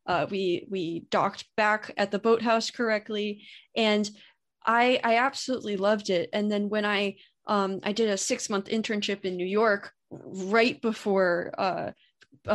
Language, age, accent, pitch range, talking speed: English, 20-39, American, 195-230 Hz, 155 wpm